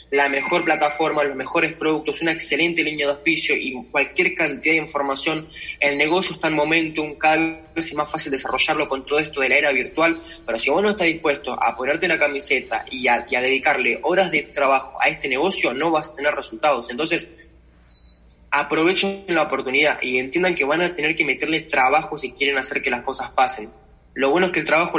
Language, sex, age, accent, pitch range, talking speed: Spanish, male, 20-39, Argentinian, 140-165 Hz, 205 wpm